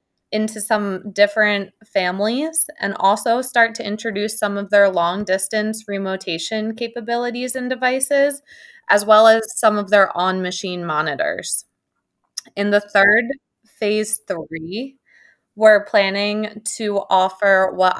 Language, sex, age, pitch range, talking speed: English, female, 20-39, 195-245 Hz, 115 wpm